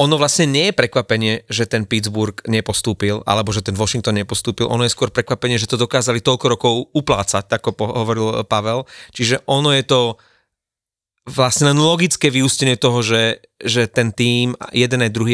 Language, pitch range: Slovak, 110-135 Hz